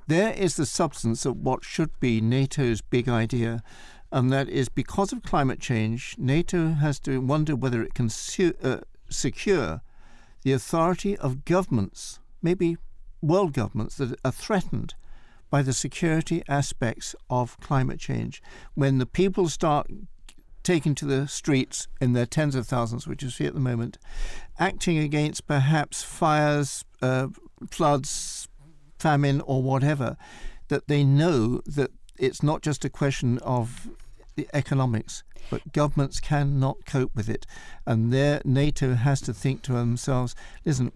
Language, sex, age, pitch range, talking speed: English, male, 60-79, 125-150 Hz, 145 wpm